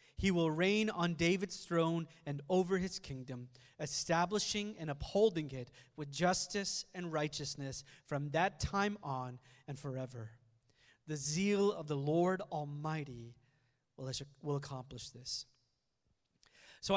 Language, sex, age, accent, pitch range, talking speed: English, male, 30-49, American, 145-205 Hz, 120 wpm